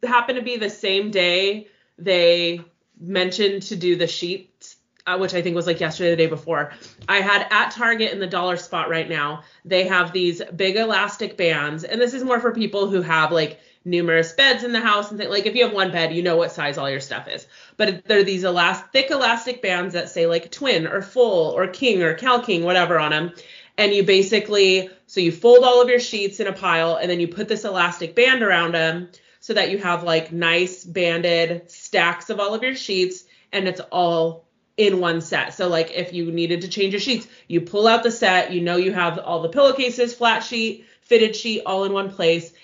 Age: 30-49